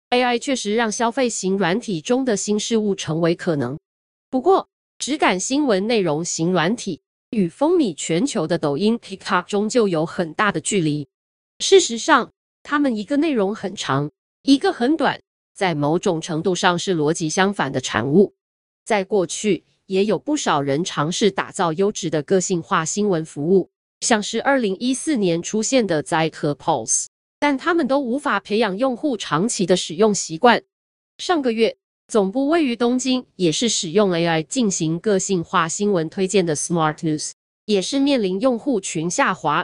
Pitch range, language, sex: 170-245 Hz, Chinese, female